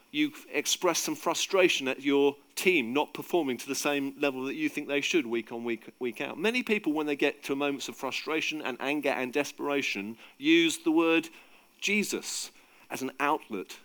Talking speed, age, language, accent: 185 wpm, 50-69, English, British